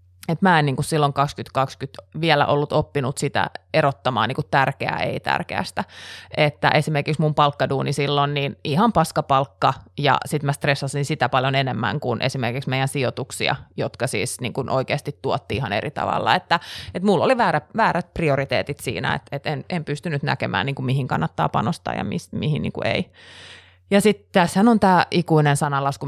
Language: Finnish